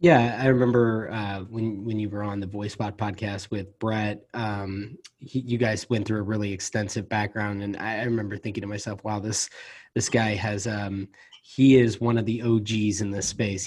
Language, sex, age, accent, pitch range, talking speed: English, male, 20-39, American, 105-125 Hz, 200 wpm